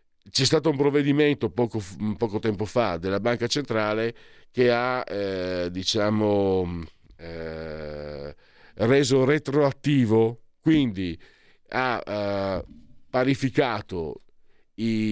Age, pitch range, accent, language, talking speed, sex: 50-69, 95-120 Hz, native, Italian, 85 wpm, male